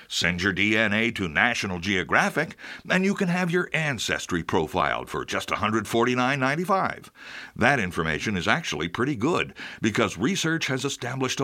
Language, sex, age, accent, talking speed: English, male, 60-79, American, 135 wpm